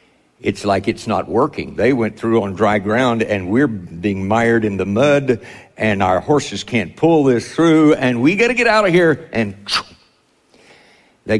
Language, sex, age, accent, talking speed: English, male, 60-79, American, 185 wpm